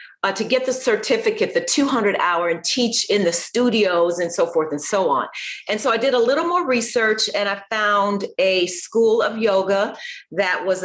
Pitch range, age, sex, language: 165-215 Hz, 40-59, female, English